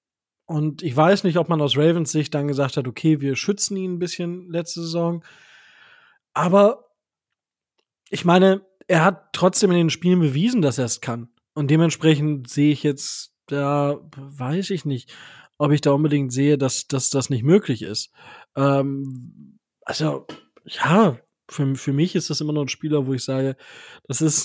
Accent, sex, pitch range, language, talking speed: German, male, 140-170 Hz, German, 170 wpm